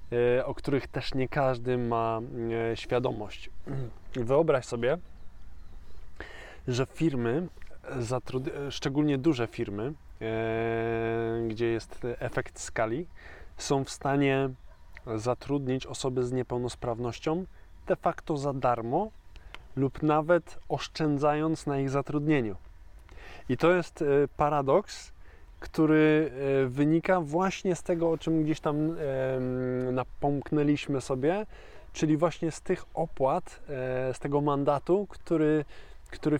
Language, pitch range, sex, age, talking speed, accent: Polish, 120-150 Hz, male, 20-39, 100 wpm, native